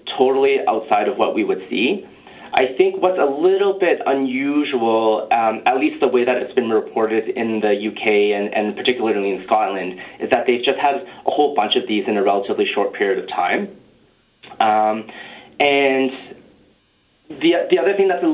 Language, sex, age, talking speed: English, male, 30-49, 185 wpm